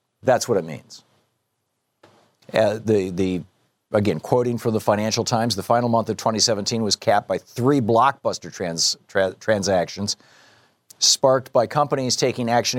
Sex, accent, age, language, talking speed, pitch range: male, American, 50-69, English, 145 wpm, 110-130 Hz